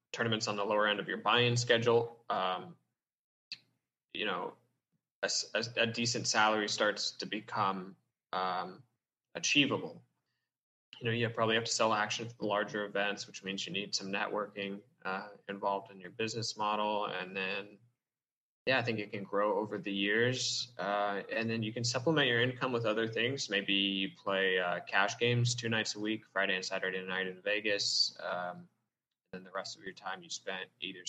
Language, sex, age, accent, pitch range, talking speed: English, male, 20-39, American, 100-120 Hz, 185 wpm